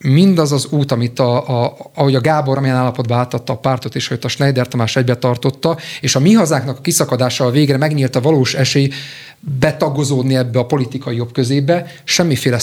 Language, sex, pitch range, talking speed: Hungarian, male, 125-145 Hz, 180 wpm